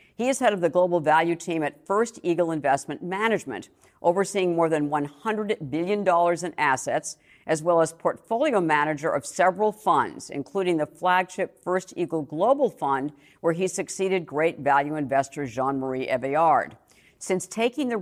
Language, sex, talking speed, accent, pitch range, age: English, female, 155 wpm, American, 150-190 Hz, 50-69